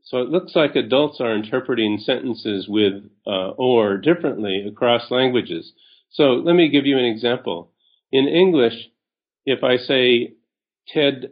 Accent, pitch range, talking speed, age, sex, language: American, 105-135 Hz, 145 wpm, 40-59, male, English